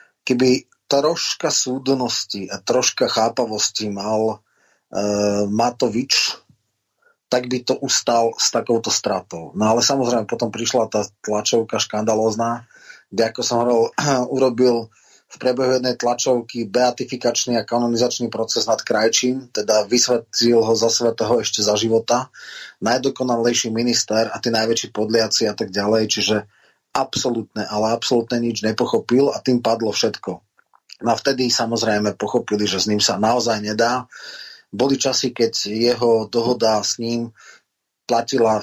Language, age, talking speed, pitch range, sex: Slovak, 30-49, 130 wpm, 110-125 Hz, male